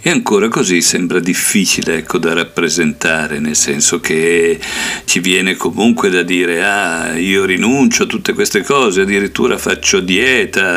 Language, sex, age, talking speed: Italian, male, 50-69, 145 wpm